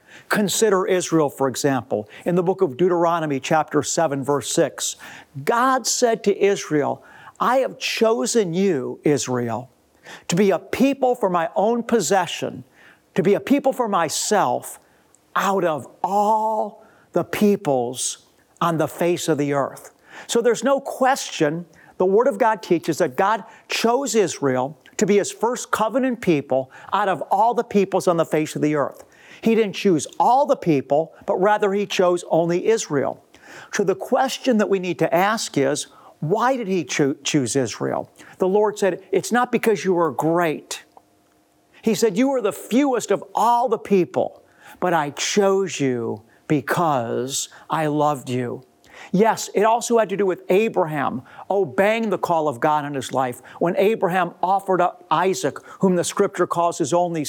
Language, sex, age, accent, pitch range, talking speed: English, male, 50-69, American, 155-210 Hz, 165 wpm